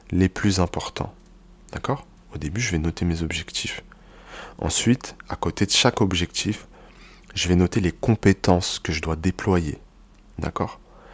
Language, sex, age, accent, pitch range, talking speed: French, male, 20-39, French, 85-105 Hz, 145 wpm